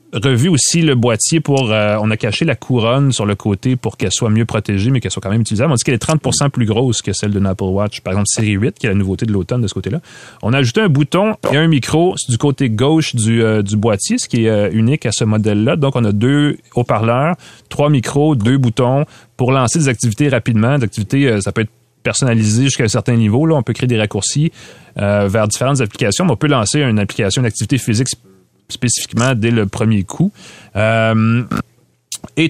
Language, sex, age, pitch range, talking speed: French, male, 30-49, 105-135 Hz, 230 wpm